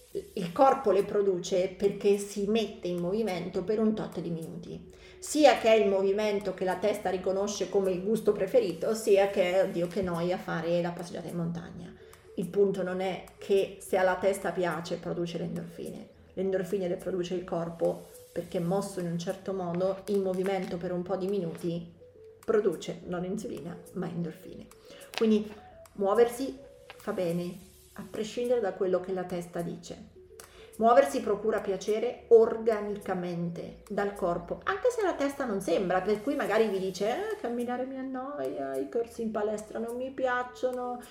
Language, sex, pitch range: Italian, female, 185-245 Hz